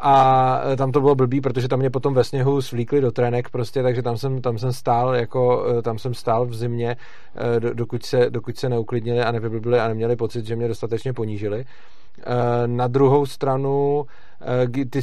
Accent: native